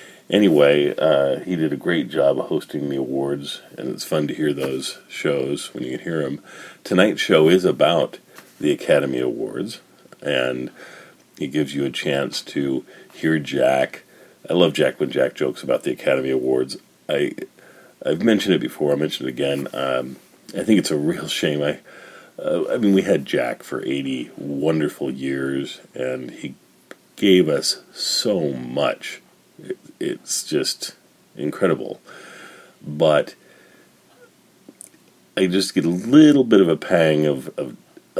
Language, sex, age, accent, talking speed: English, male, 50-69, American, 155 wpm